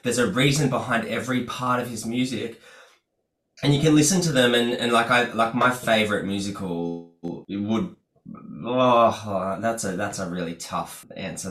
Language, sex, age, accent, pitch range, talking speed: English, male, 20-39, Australian, 105-130 Hz, 170 wpm